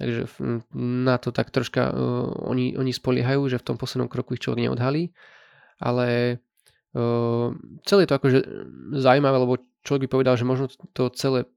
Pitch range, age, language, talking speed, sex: 120-130 Hz, 20-39, Slovak, 165 wpm, male